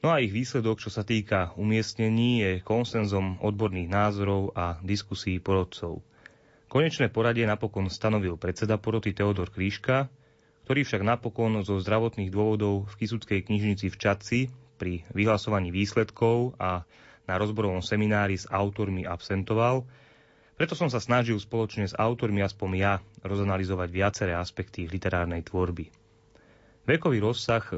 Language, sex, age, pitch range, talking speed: Slovak, male, 30-49, 95-115 Hz, 130 wpm